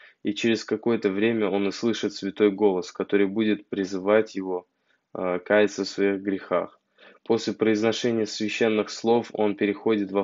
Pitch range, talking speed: 95-110 Hz, 135 wpm